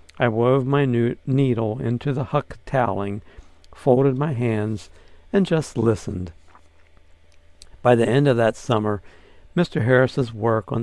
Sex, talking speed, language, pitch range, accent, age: male, 125 wpm, English, 95-125 Hz, American, 60-79